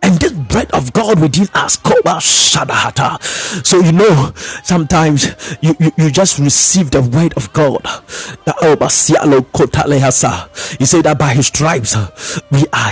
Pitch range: 145-190 Hz